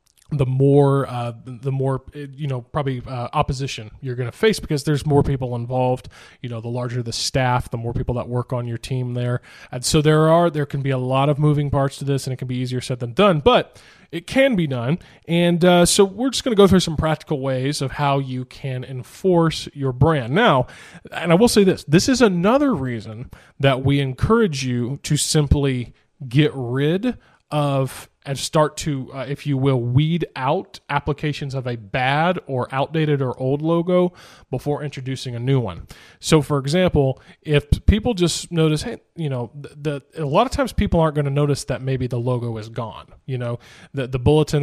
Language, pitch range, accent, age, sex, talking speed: English, 130-165 Hz, American, 20-39, male, 210 wpm